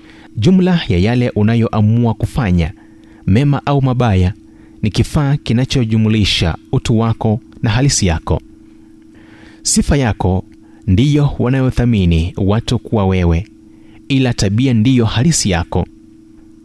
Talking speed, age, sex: 100 wpm, 30-49, male